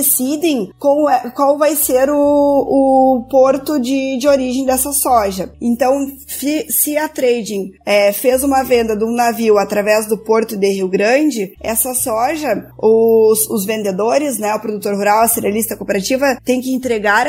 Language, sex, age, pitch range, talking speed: Portuguese, female, 20-39, 225-275 Hz, 165 wpm